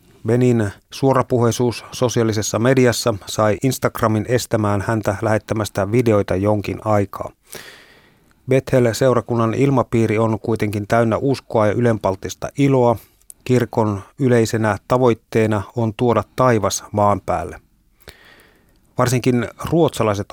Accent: native